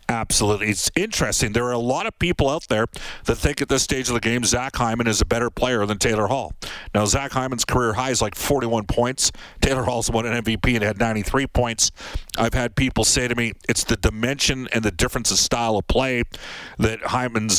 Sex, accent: male, American